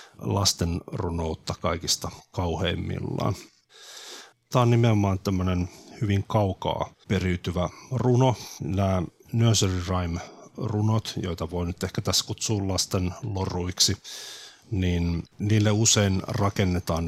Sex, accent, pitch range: male, native, 85-100 Hz